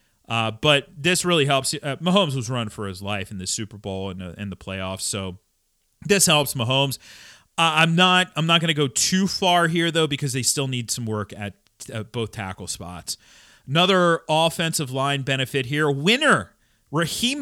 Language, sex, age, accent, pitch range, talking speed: English, male, 40-59, American, 110-165 Hz, 190 wpm